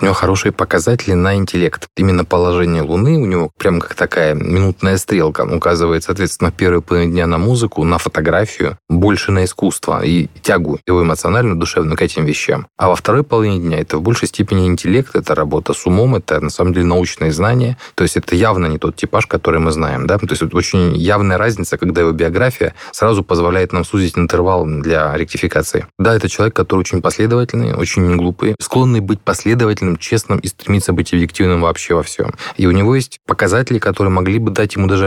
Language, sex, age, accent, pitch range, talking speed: Russian, male, 20-39, native, 85-105 Hz, 195 wpm